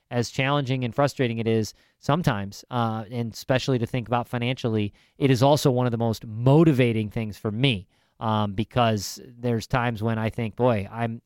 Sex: male